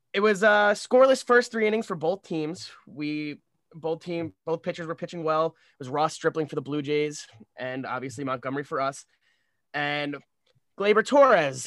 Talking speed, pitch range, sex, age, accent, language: 175 wpm, 150-220 Hz, male, 20-39, American, English